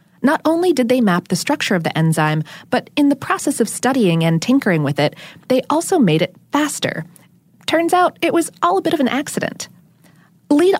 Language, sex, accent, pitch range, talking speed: English, female, American, 180-270 Hz, 200 wpm